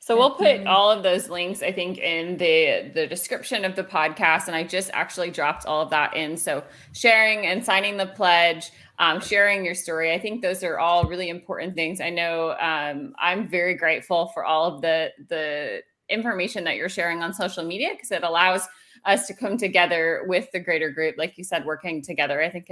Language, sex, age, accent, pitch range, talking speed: English, female, 30-49, American, 165-205 Hz, 210 wpm